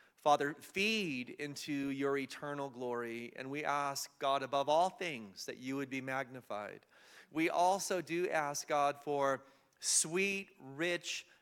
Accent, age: American, 40-59